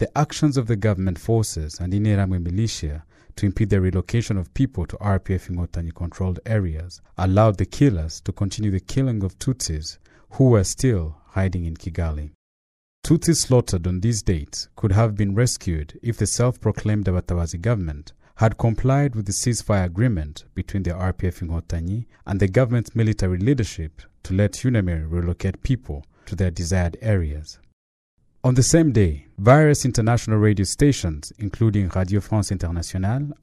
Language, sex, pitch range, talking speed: English, male, 90-115 Hz, 150 wpm